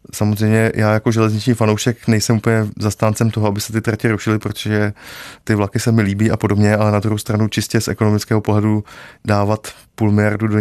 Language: Czech